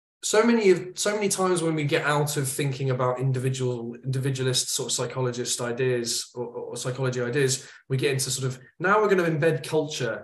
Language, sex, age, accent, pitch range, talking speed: English, male, 20-39, British, 125-160 Hz, 200 wpm